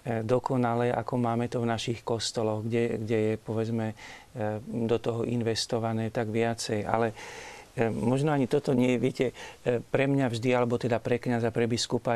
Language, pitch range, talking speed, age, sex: Slovak, 115-140 Hz, 155 wpm, 40-59, male